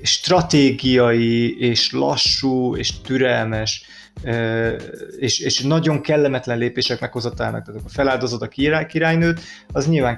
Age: 30-49